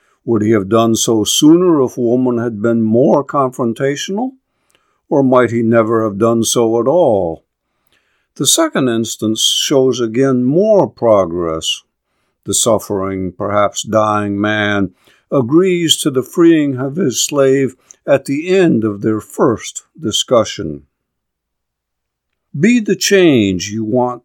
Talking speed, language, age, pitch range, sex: 130 wpm, English, 50-69, 105-140 Hz, male